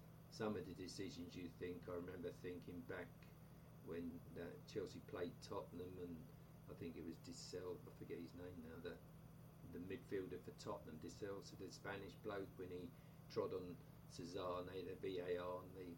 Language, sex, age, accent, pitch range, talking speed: English, male, 50-69, British, 90-150 Hz, 175 wpm